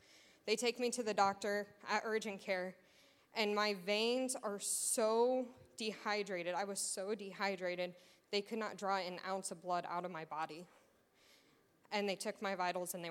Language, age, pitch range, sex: English, 20-39, 180-210 Hz, female